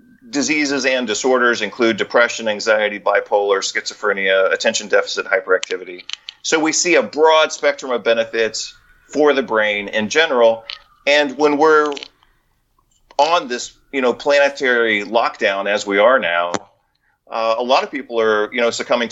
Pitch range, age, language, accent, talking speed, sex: 110-140 Hz, 40-59, English, American, 145 wpm, male